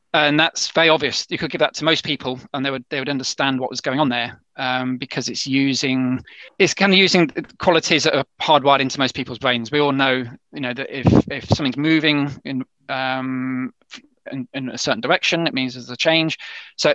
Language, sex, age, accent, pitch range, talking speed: English, male, 20-39, British, 130-150 Hz, 215 wpm